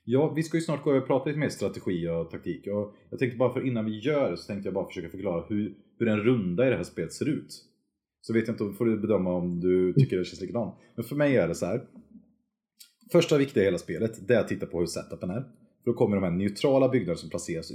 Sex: male